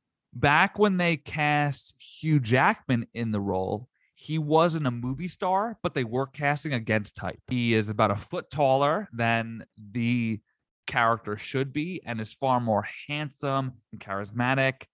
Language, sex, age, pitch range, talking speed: English, male, 30-49, 110-140 Hz, 155 wpm